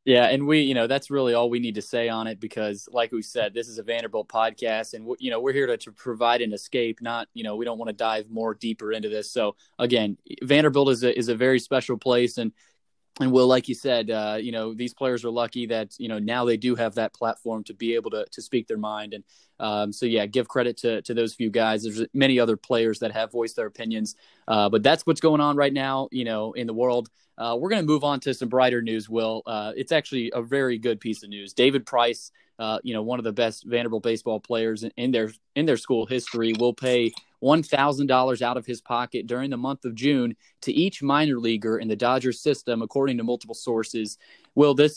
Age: 20-39